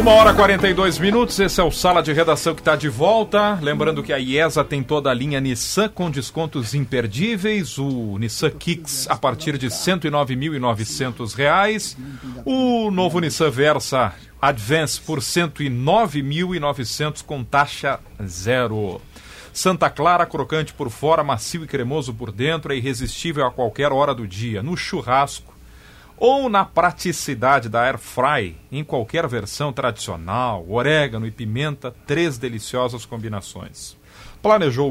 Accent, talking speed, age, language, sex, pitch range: Brazilian, 140 wpm, 40-59, Portuguese, male, 125-160 Hz